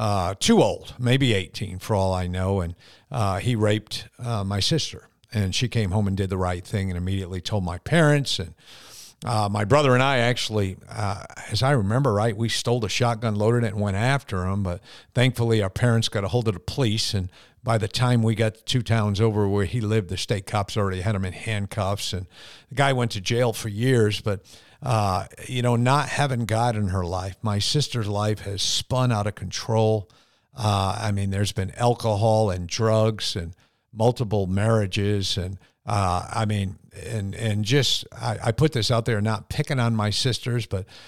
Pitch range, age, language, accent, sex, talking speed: 100-120 Hz, 50-69, English, American, male, 205 wpm